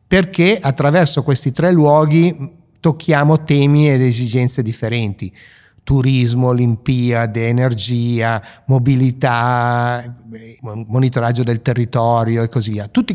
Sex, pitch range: male, 120-155 Hz